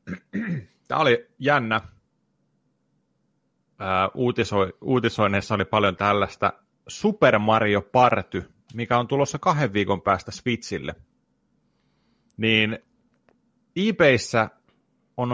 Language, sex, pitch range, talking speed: Finnish, male, 100-140 Hz, 80 wpm